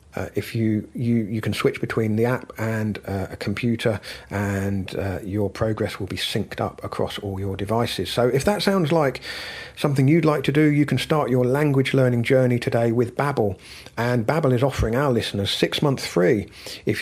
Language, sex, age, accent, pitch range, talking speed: English, male, 50-69, British, 105-130 Hz, 200 wpm